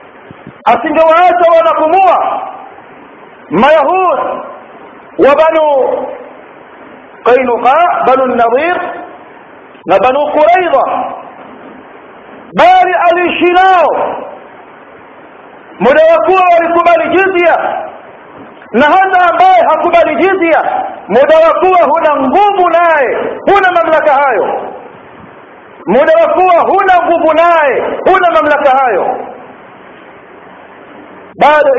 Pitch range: 290-365 Hz